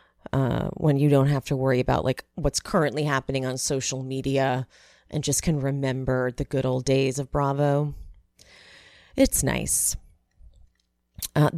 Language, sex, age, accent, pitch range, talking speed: English, female, 30-49, American, 130-185 Hz, 145 wpm